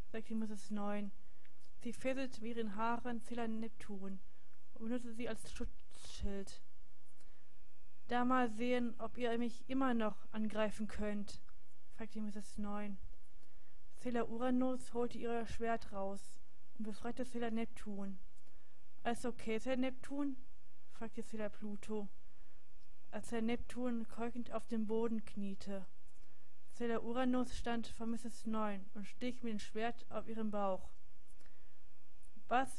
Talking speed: 125 wpm